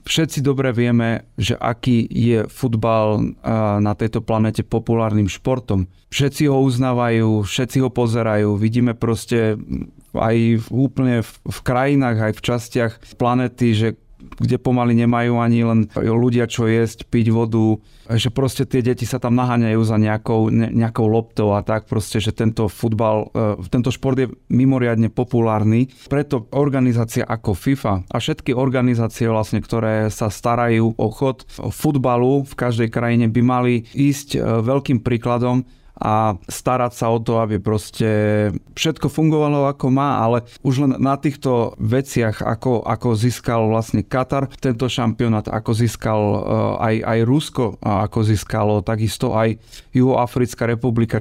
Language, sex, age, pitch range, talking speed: Slovak, male, 30-49, 110-130 Hz, 140 wpm